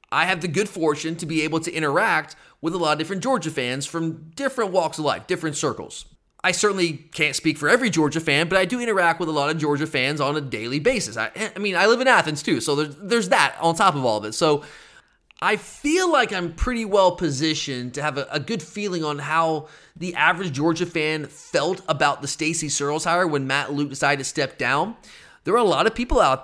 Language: English